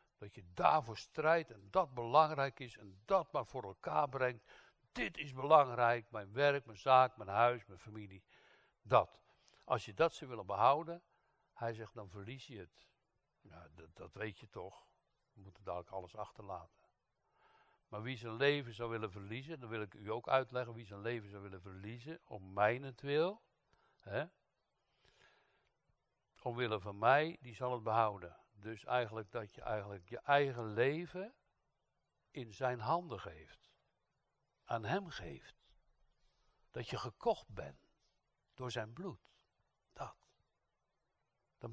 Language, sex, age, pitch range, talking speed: Dutch, male, 60-79, 105-140 Hz, 145 wpm